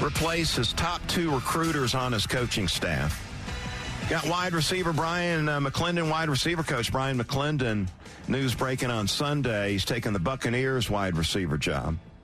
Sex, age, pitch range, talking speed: male, 50-69, 95-140 Hz, 150 wpm